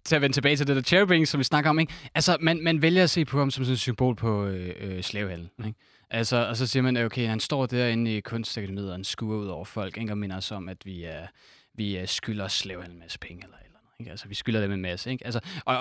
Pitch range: 110-160 Hz